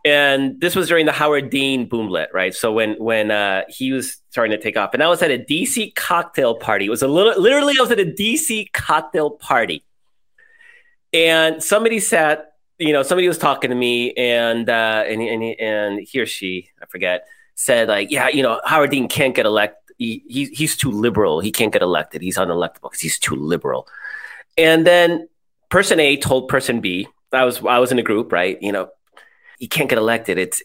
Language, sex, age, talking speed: English, male, 30-49, 205 wpm